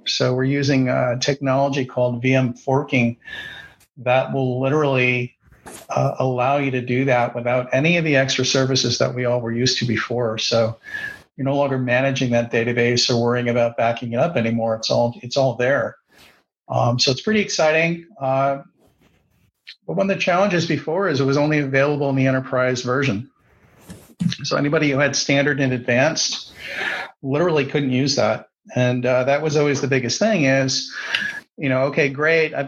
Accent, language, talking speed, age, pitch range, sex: American, English, 175 wpm, 50-69, 125-150 Hz, male